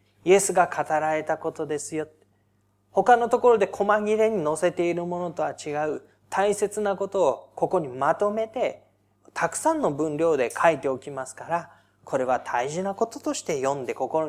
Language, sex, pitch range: Japanese, male, 125-185 Hz